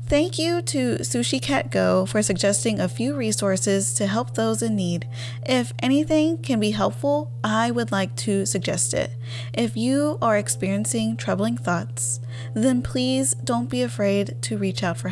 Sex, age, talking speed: female, 10-29, 160 wpm